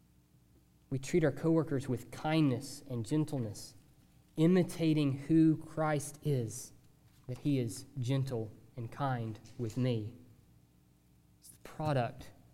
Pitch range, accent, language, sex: 115-160 Hz, American, English, male